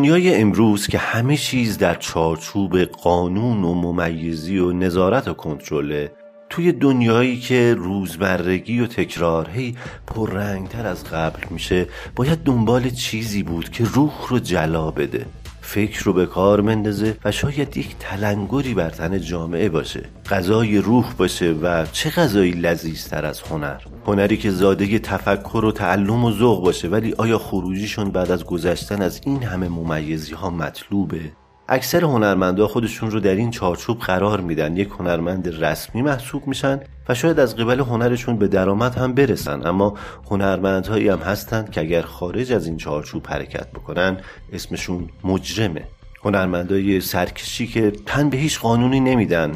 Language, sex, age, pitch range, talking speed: Persian, male, 40-59, 90-120 Hz, 145 wpm